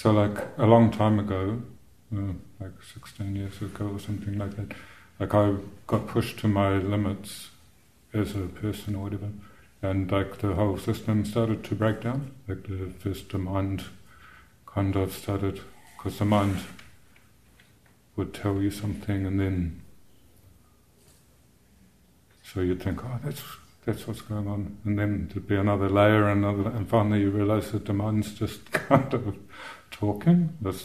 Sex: male